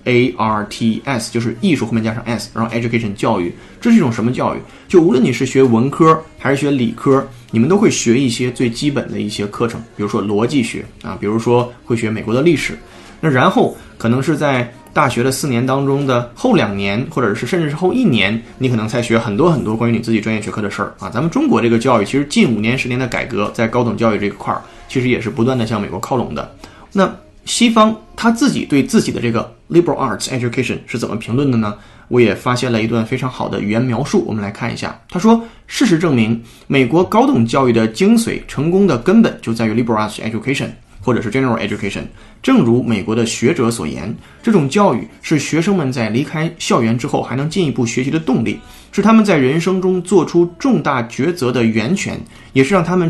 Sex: male